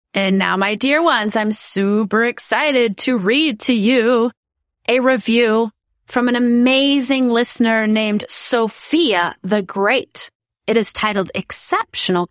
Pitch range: 210-270 Hz